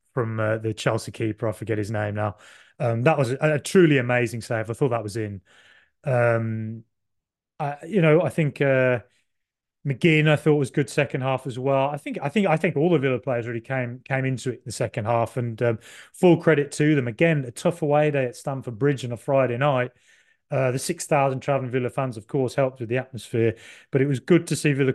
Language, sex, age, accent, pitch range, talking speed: English, male, 30-49, British, 120-160 Hz, 230 wpm